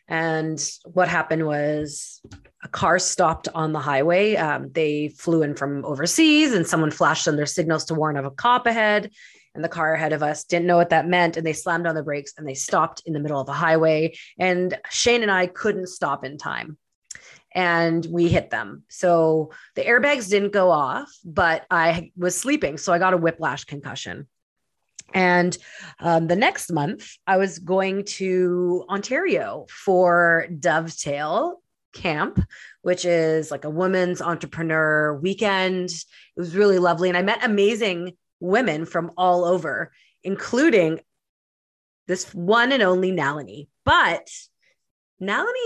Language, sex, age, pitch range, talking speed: English, female, 30-49, 160-210 Hz, 160 wpm